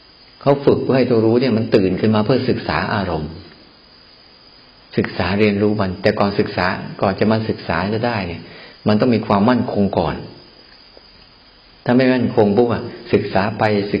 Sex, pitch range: male, 95-115 Hz